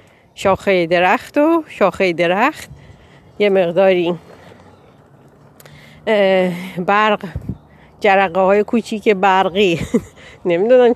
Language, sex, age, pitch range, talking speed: Persian, female, 40-59, 175-225 Hz, 70 wpm